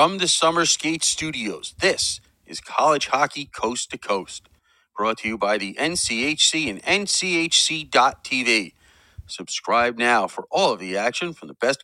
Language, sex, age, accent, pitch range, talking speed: English, male, 40-59, American, 100-160 Hz, 150 wpm